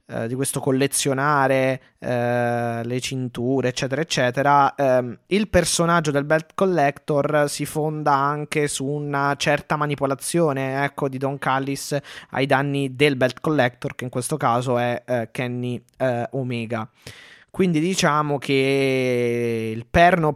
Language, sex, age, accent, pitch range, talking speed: Italian, male, 20-39, native, 125-155 Hz, 130 wpm